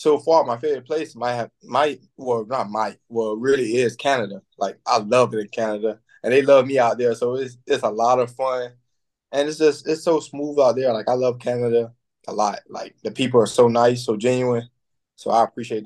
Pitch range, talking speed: 110-135 Hz, 225 wpm